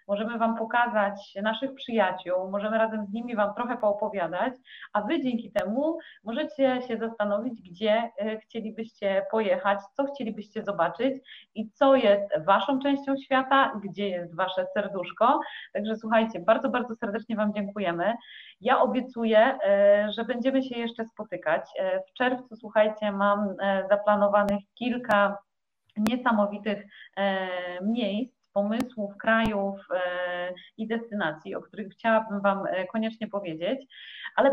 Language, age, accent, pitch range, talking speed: Polish, 30-49, native, 205-245 Hz, 120 wpm